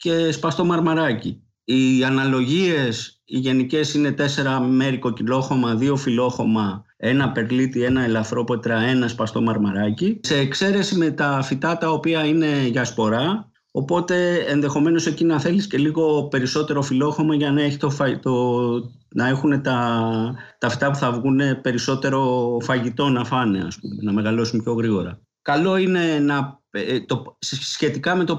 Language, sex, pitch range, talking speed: Greek, male, 120-160 Hz, 135 wpm